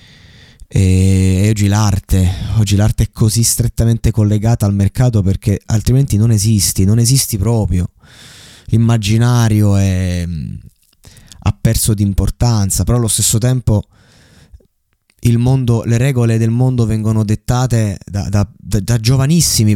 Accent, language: native, Italian